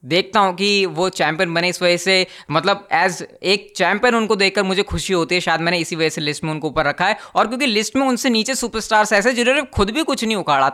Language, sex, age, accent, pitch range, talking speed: Hindi, female, 20-39, native, 165-200 Hz, 245 wpm